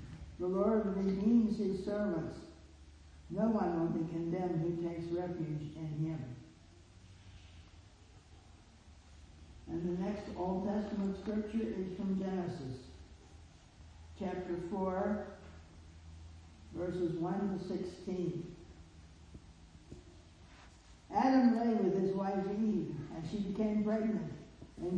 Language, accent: English, American